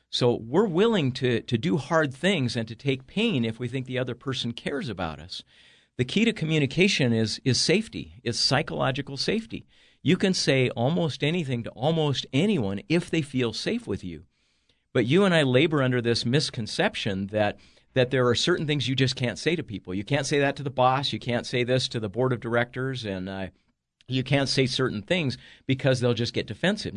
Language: English